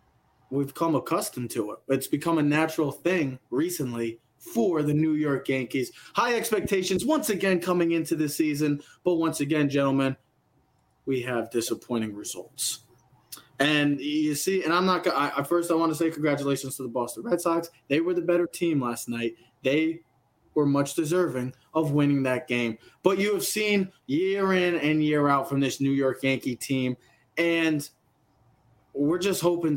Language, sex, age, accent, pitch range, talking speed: English, male, 20-39, American, 130-170 Hz, 175 wpm